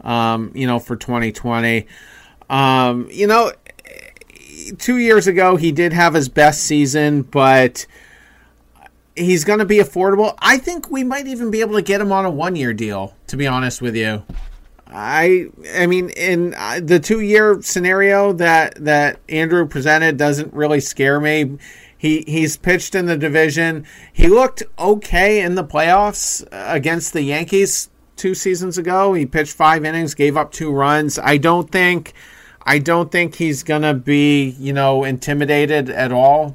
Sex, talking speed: male, 165 wpm